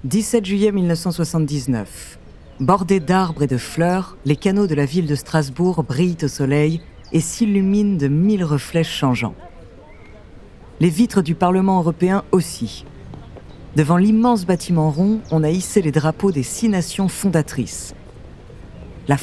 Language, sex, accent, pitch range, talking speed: French, female, French, 140-190 Hz, 135 wpm